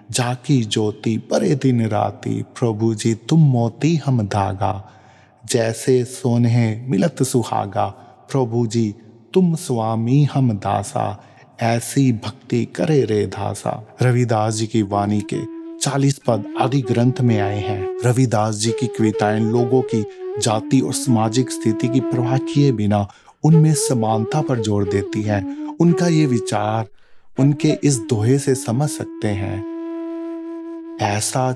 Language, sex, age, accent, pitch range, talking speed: Hindi, male, 30-49, native, 110-130 Hz, 130 wpm